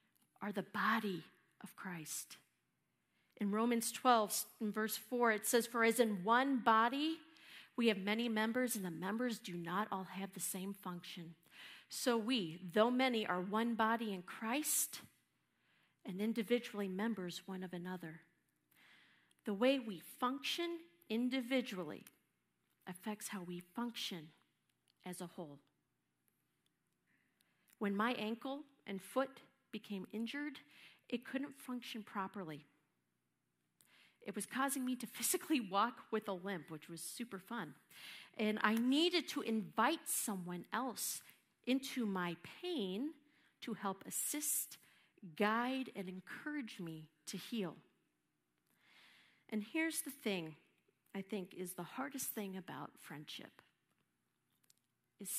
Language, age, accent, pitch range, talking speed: English, 50-69, American, 180-245 Hz, 125 wpm